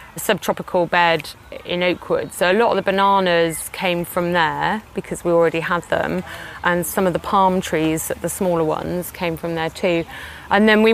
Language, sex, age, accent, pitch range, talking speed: English, female, 30-49, British, 165-195 Hz, 185 wpm